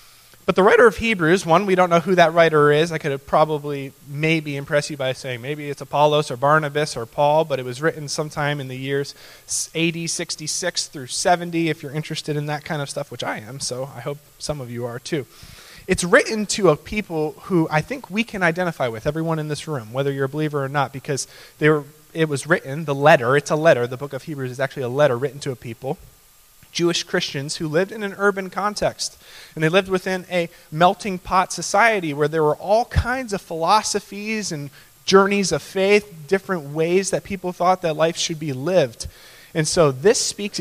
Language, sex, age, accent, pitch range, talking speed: English, male, 20-39, American, 145-180 Hz, 215 wpm